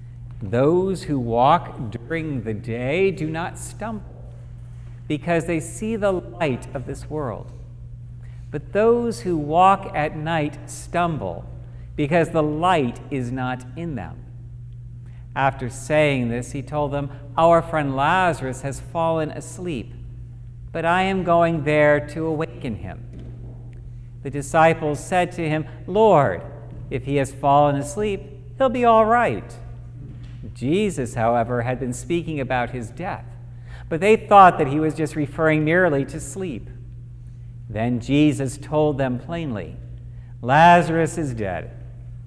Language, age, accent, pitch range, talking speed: English, 60-79, American, 120-160 Hz, 130 wpm